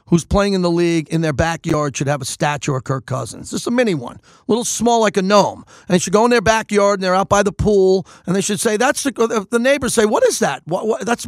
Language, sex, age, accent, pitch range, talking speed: English, male, 40-59, American, 165-235 Hz, 270 wpm